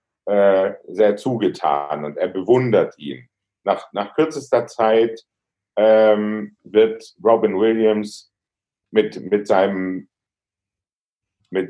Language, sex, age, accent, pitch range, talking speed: German, male, 50-69, German, 100-110 Hz, 90 wpm